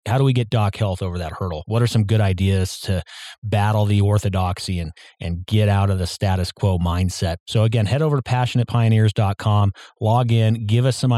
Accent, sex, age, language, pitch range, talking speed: American, male, 30-49, English, 100-120 Hz, 205 wpm